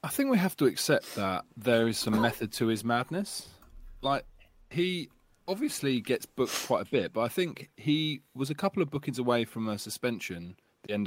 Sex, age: male, 20-39